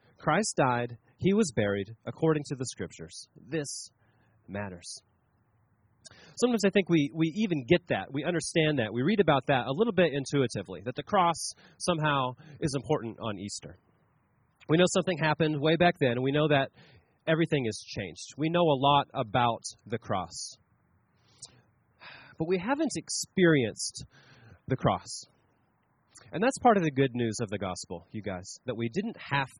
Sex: male